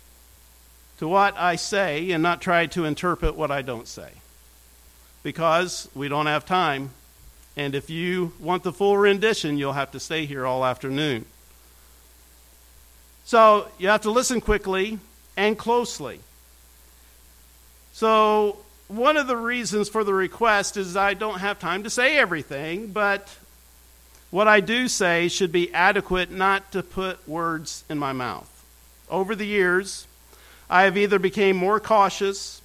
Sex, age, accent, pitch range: male, 50-69, American, 140-215 Hz